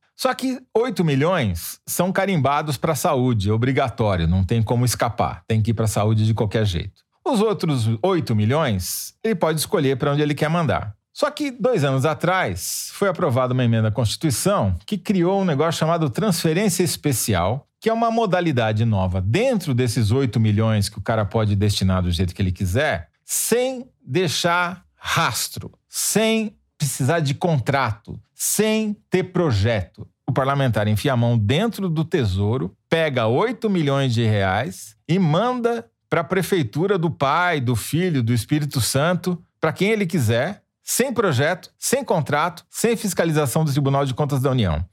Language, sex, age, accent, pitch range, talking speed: Portuguese, male, 40-59, Brazilian, 110-175 Hz, 165 wpm